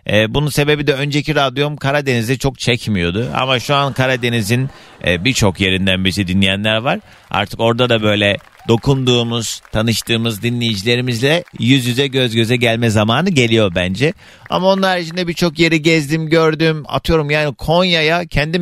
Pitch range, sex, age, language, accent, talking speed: 110-150 Hz, male, 40-59, Turkish, native, 140 wpm